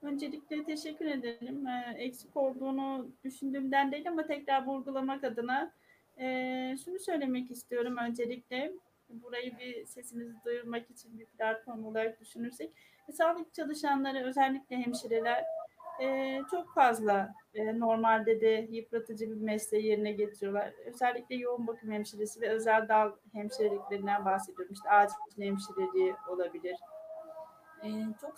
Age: 30-49